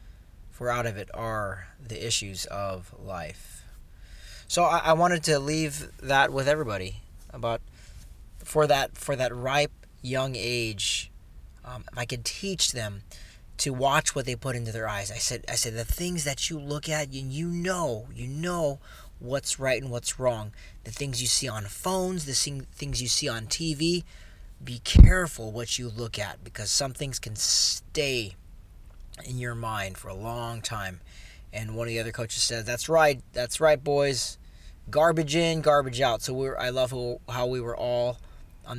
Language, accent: English, American